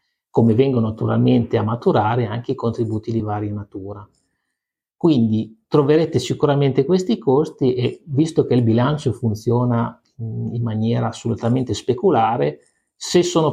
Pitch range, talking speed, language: 110-135 Hz, 125 wpm, Italian